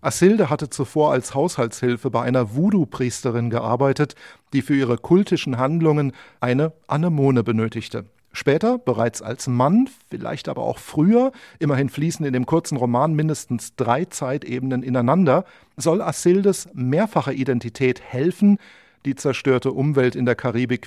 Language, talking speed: German, 130 wpm